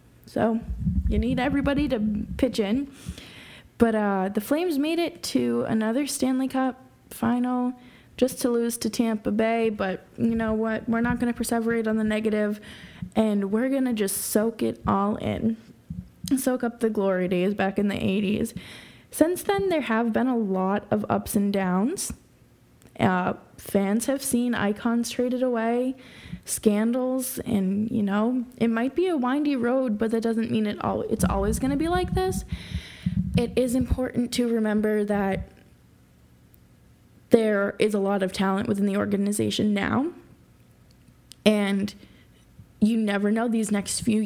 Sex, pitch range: female, 195-240 Hz